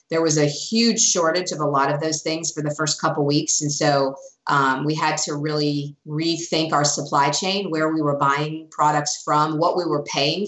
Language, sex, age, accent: English, female, 30-49, American